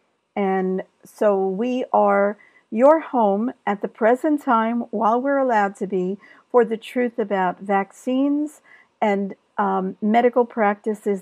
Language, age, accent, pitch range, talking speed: English, 50-69, American, 195-235 Hz, 130 wpm